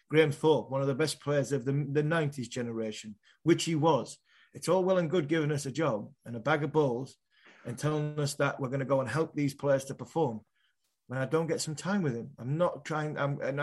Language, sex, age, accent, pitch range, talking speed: English, male, 30-49, British, 135-165 Hz, 245 wpm